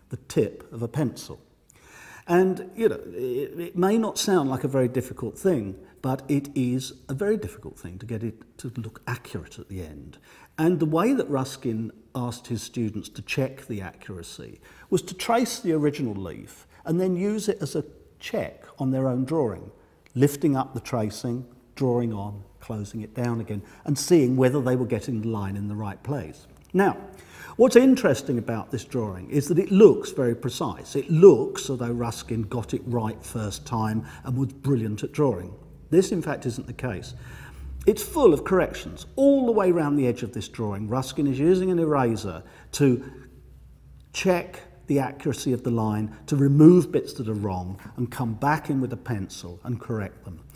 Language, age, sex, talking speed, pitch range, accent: English, 50-69, male, 190 wpm, 110-150 Hz, British